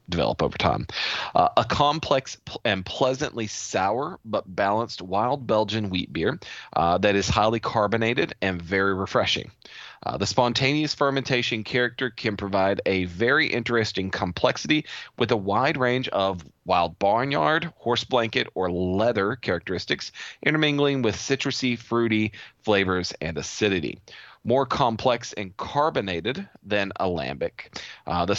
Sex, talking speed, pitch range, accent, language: male, 130 wpm, 95-120 Hz, American, English